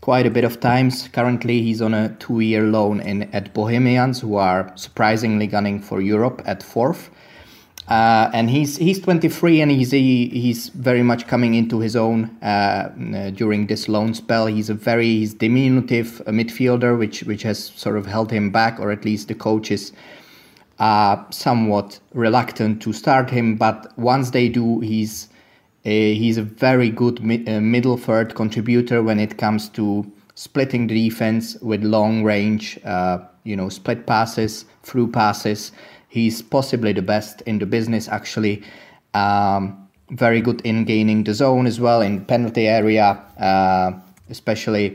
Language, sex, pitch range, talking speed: Danish, male, 105-120 Hz, 160 wpm